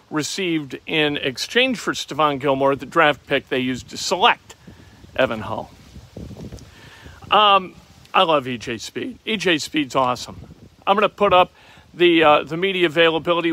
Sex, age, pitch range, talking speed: male, 50-69, 145-190 Hz, 145 wpm